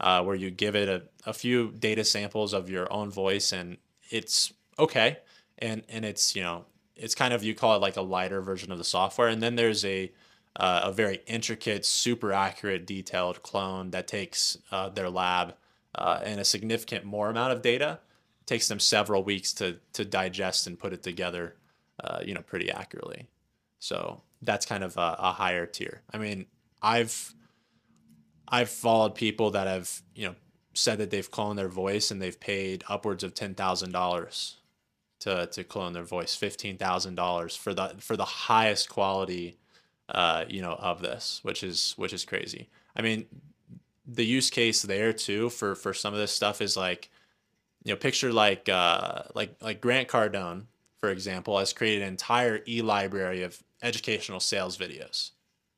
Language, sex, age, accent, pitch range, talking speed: English, male, 20-39, American, 95-110 Hz, 180 wpm